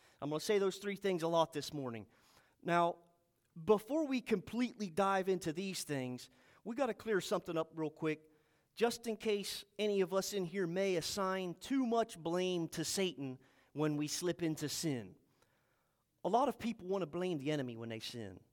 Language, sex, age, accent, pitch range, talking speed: English, male, 40-59, American, 170-240 Hz, 190 wpm